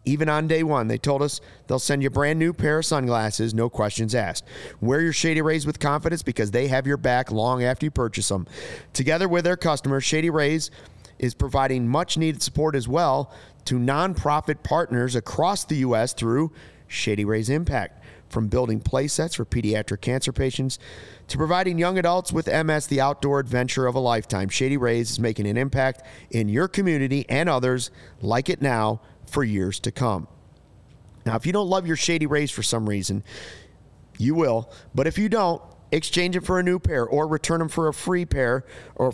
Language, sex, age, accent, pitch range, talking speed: English, male, 30-49, American, 115-150 Hz, 195 wpm